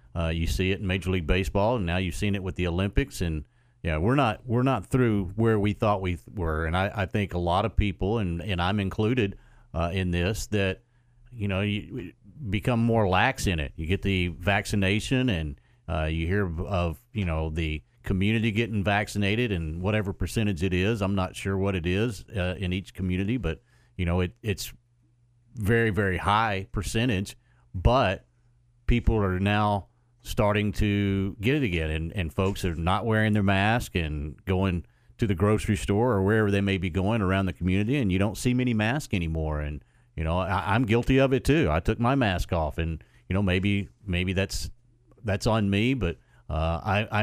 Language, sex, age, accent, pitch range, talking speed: English, male, 40-59, American, 90-115 Hz, 200 wpm